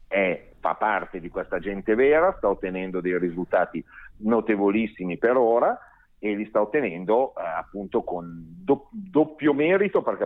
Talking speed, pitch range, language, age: 135 wpm, 95-110 Hz, Italian, 40-59